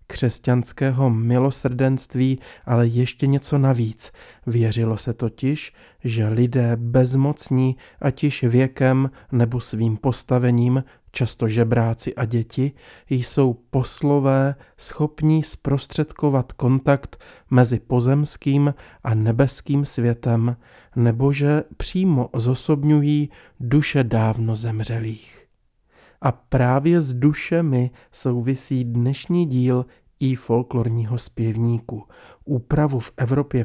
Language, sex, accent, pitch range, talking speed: Czech, male, native, 120-140 Hz, 95 wpm